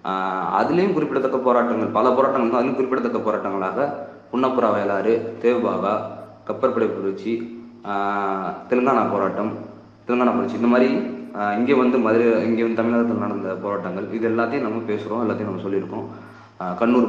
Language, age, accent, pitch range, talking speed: Tamil, 20-39, native, 100-120 Hz, 125 wpm